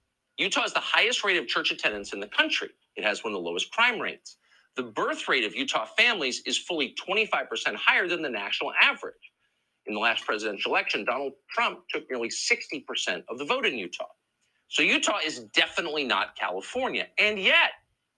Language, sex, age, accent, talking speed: English, male, 50-69, American, 185 wpm